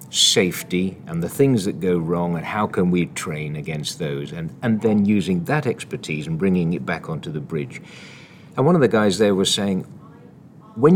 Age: 50-69